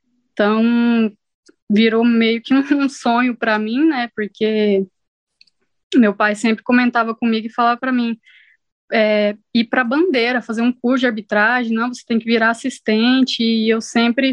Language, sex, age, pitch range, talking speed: Portuguese, female, 20-39, 220-260 Hz, 155 wpm